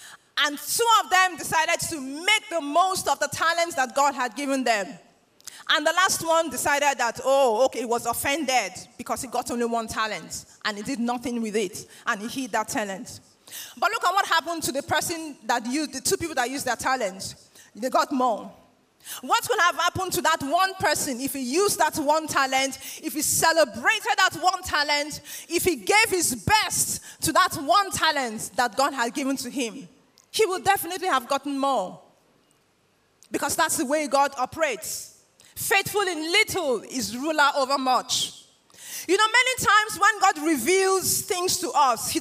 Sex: female